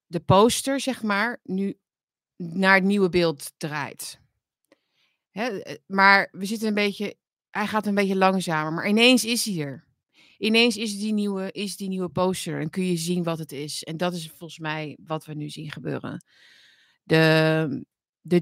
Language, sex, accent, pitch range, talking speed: Dutch, female, Dutch, 160-195 Hz, 175 wpm